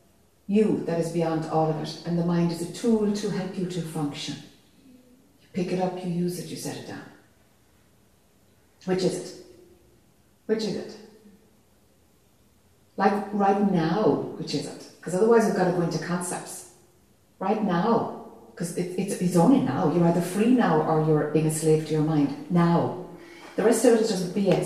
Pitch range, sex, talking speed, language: 160-195 Hz, female, 185 wpm, English